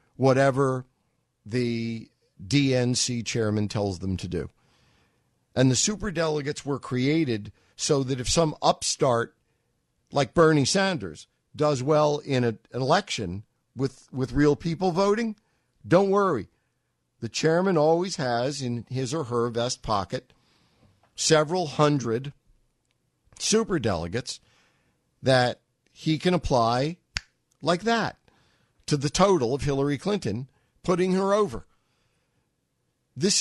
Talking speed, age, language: 115 wpm, 50-69, English